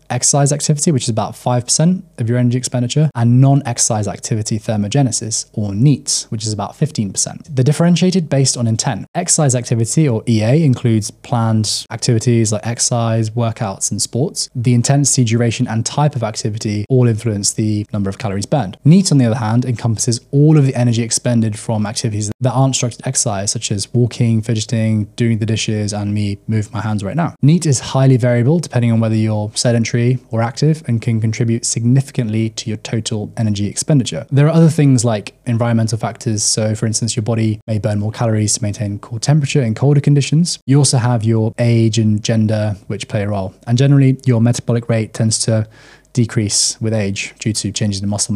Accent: British